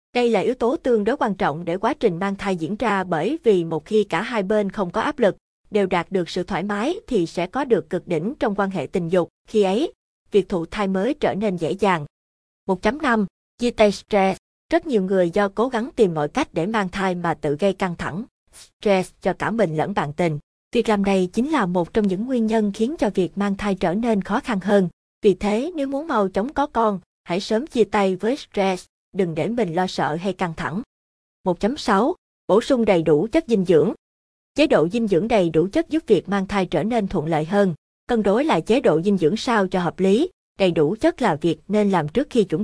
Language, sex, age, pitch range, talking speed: Vietnamese, female, 20-39, 180-225 Hz, 235 wpm